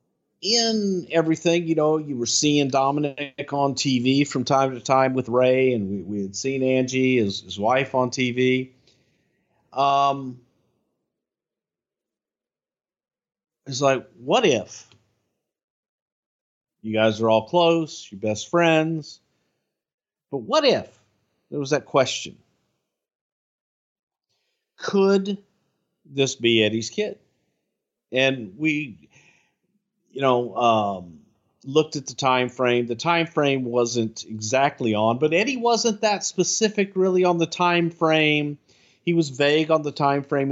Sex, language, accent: male, English, American